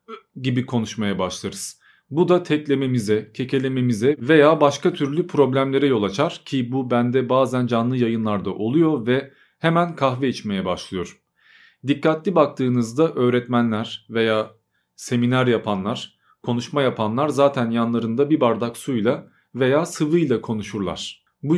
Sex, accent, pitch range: male, native, 120-155 Hz